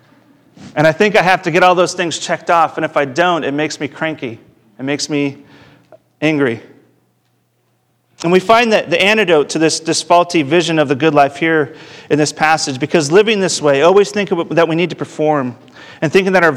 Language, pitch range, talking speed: English, 140-180 Hz, 210 wpm